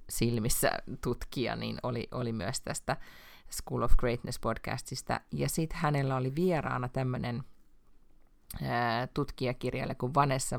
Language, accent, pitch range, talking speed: Finnish, native, 115-135 Hz, 115 wpm